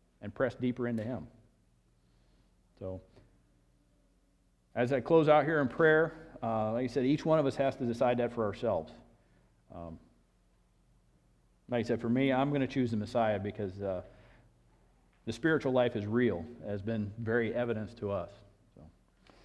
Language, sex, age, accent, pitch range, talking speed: English, male, 40-59, American, 95-135 Hz, 165 wpm